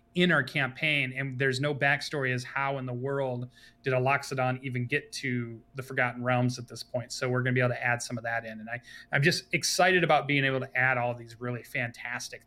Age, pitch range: 30-49, 125-150 Hz